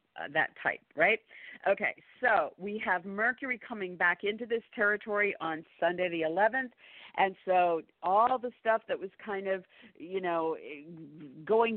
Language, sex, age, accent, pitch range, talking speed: English, female, 50-69, American, 165-200 Hz, 150 wpm